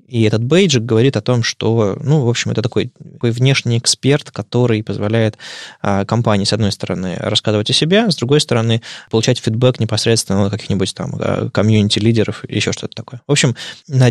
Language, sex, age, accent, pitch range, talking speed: Russian, male, 20-39, native, 110-135 Hz, 180 wpm